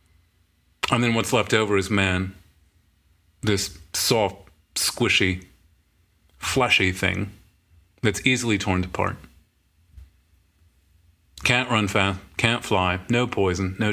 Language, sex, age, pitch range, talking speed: English, male, 40-59, 85-115 Hz, 105 wpm